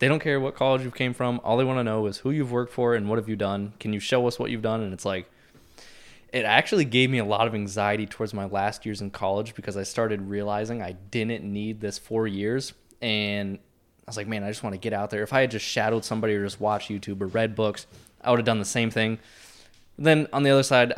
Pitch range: 100-120 Hz